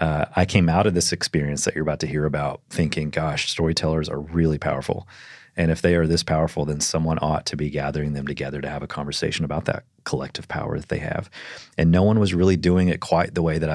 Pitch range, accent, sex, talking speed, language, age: 75-85 Hz, American, male, 240 wpm, English, 30-49